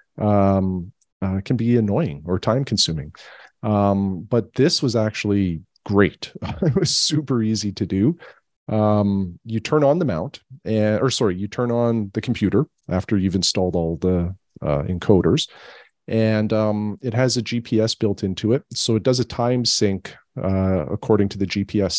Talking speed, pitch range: 165 wpm, 95-120 Hz